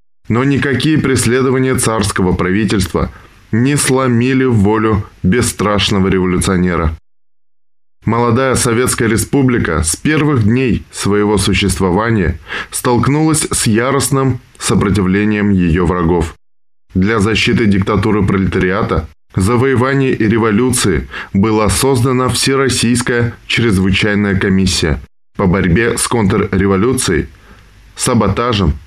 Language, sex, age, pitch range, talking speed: Russian, male, 10-29, 95-120 Hz, 85 wpm